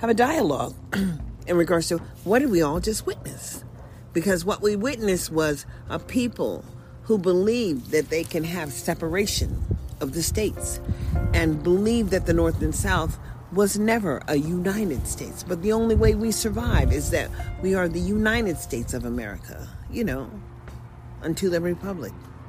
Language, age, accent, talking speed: English, 40-59, American, 165 wpm